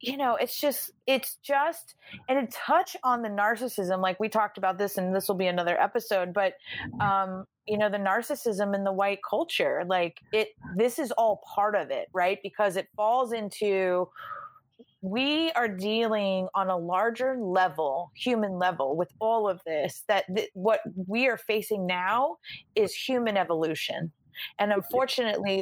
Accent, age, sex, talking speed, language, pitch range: American, 30-49, female, 165 wpm, English, 185-230 Hz